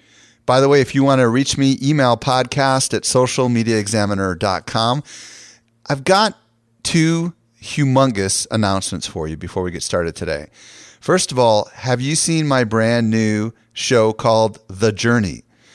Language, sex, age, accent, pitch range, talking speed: English, male, 30-49, American, 110-135 Hz, 145 wpm